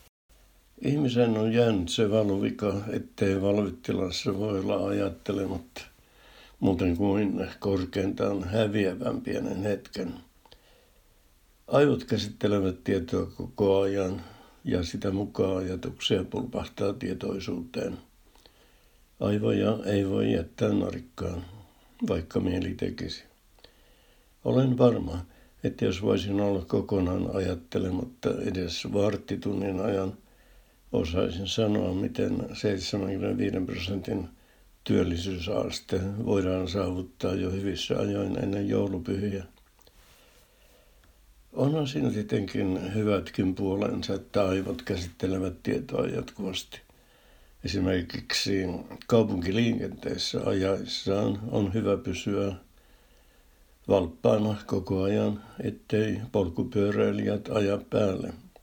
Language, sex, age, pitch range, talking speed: Finnish, male, 60-79, 95-105 Hz, 85 wpm